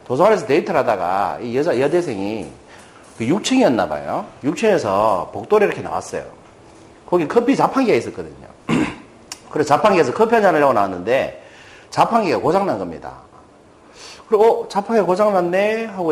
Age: 40-59